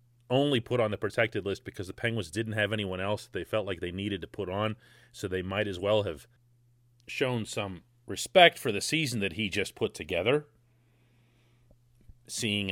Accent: American